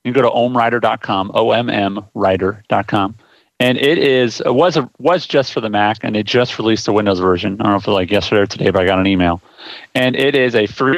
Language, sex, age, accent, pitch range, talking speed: English, male, 30-49, American, 100-125 Hz, 240 wpm